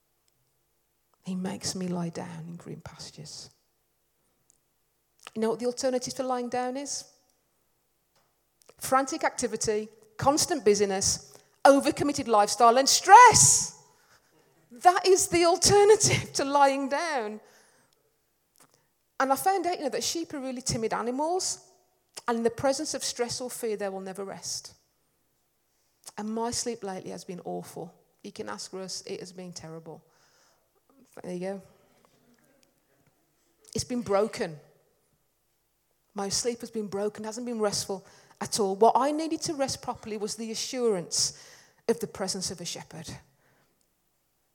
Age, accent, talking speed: 40-59, British, 135 wpm